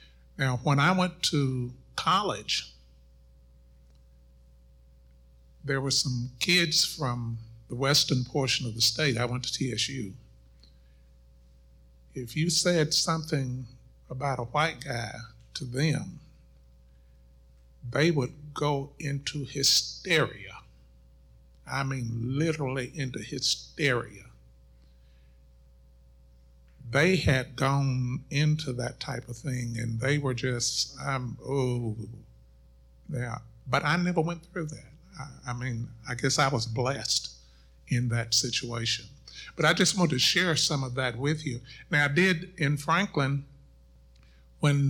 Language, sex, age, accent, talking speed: English, male, 60-79, American, 120 wpm